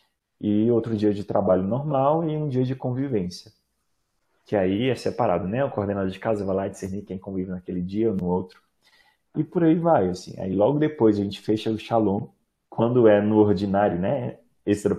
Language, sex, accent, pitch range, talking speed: Portuguese, male, Brazilian, 100-115 Hz, 200 wpm